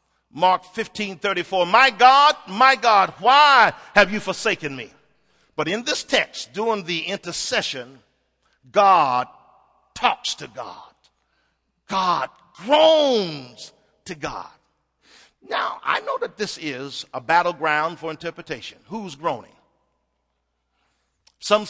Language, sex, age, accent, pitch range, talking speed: English, male, 50-69, American, 140-195 Hz, 110 wpm